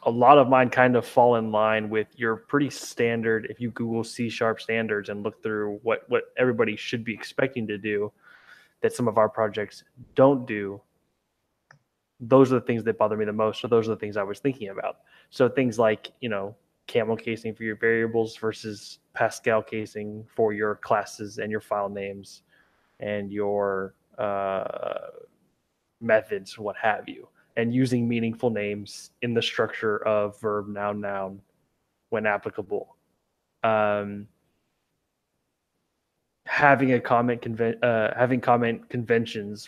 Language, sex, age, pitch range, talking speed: English, male, 20-39, 105-120 Hz, 155 wpm